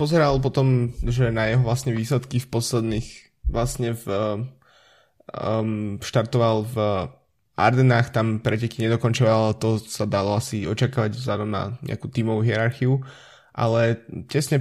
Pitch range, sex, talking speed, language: 110-125 Hz, male, 125 wpm, Slovak